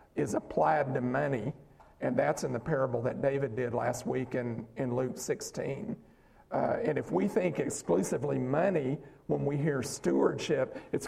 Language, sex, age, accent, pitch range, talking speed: English, male, 50-69, American, 125-150 Hz, 160 wpm